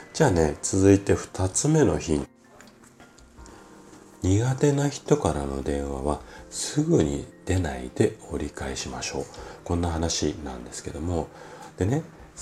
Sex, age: male, 40-59